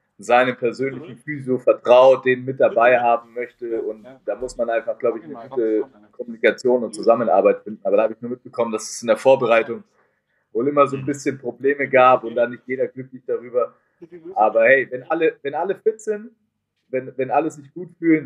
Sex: male